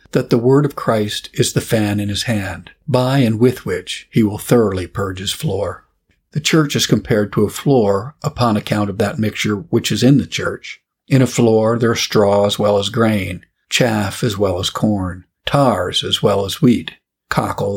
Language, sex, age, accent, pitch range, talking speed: English, male, 50-69, American, 100-125 Hz, 200 wpm